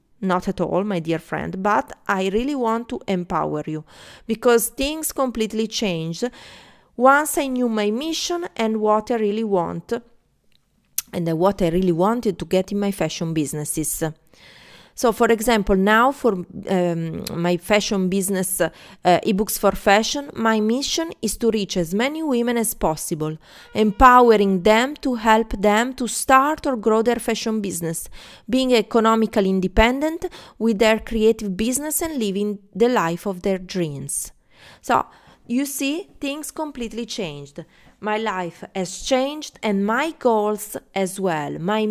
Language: English